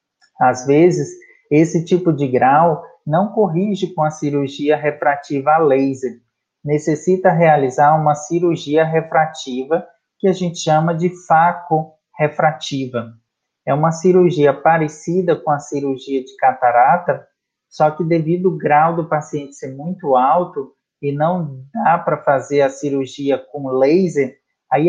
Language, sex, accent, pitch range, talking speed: English, male, Brazilian, 140-175 Hz, 135 wpm